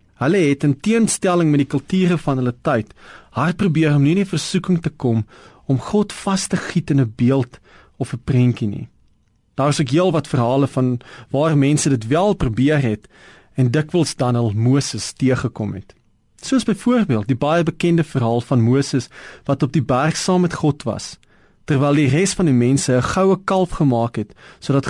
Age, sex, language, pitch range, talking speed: 40-59, male, Dutch, 125-160 Hz, 185 wpm